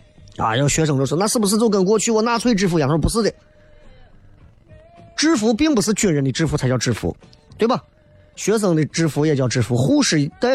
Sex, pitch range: male, 125-180 Hz